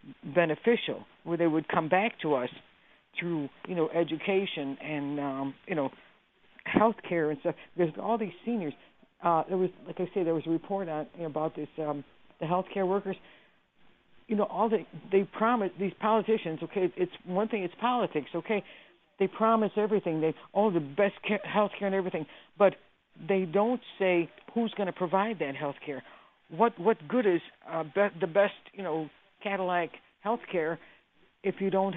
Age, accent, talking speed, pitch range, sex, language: 60-79, American, 185 wpm, 170-205 Hz, female, English